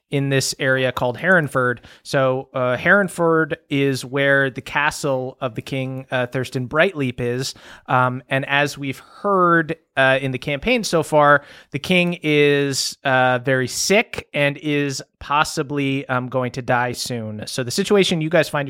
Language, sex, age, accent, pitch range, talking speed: English, male, 30-49, American, 130-150 Hz, 160 wpm